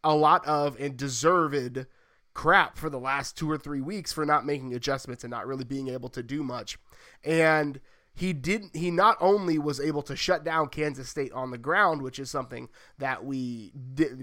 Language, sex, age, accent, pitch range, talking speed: English, male, 30-49, American, 140-175 Hz, 200 wpm